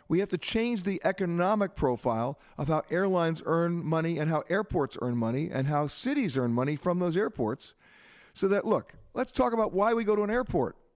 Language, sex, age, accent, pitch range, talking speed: English, male, 50-69, American, 135-200 Hz, 205 wpm